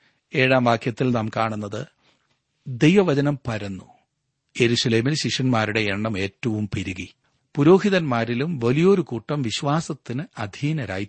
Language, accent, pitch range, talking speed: Malayalam, native, 110-145 Hz, 85 wpm